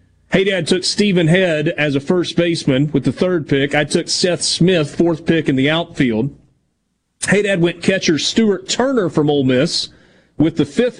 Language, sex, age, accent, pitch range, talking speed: English, male, 40-59, American, 145-185 Hz, 185 wpm